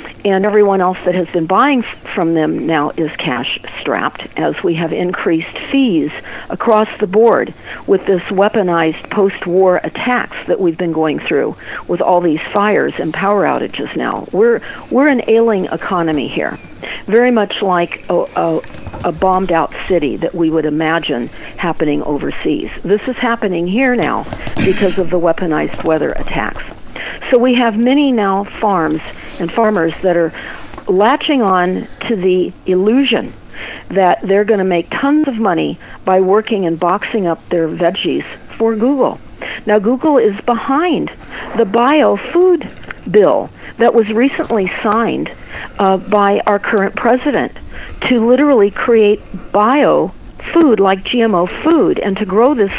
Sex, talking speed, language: female, 150 wpm, English